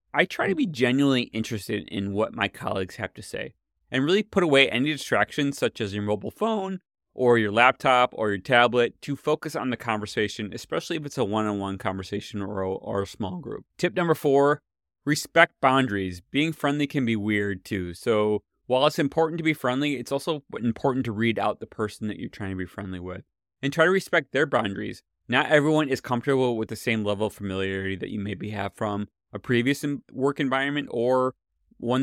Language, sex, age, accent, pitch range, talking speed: English, male, 30-49, American, 105-145 Hz, 200 wpm